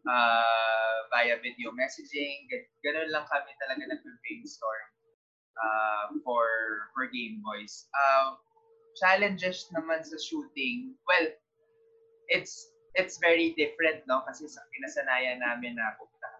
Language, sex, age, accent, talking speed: English, male, 20-39, Filipino, 115 wpm